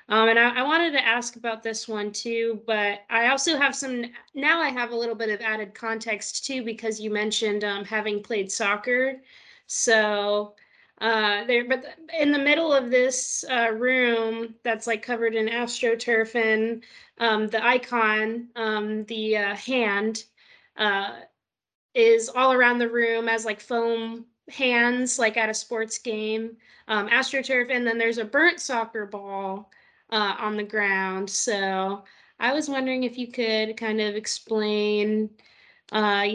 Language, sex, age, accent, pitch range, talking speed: English, female, 20-39, American, 210-250 Hz, 160 wpm